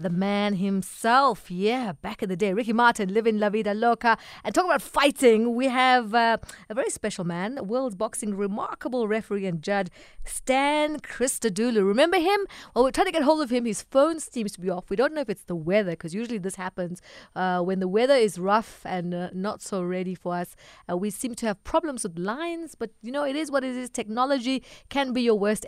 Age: 30-49